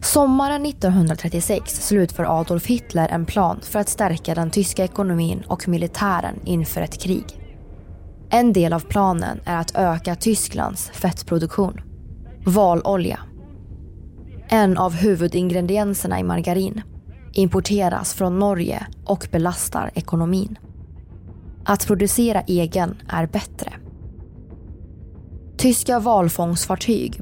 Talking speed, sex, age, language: 100 wpm, female, 20-39, Swedish